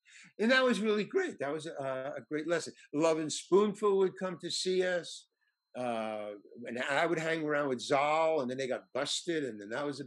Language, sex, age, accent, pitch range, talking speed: English, male, 50-69, American, 140-195 Hz, 220 wpm